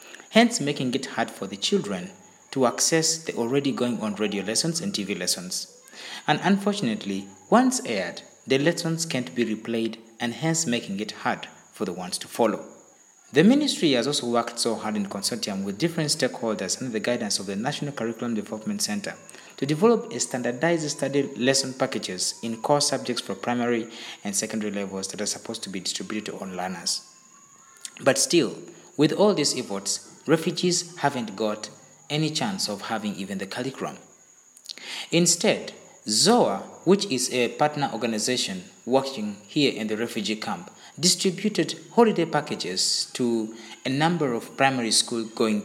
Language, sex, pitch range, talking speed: English, male, 115-175 Hz, 155 wpm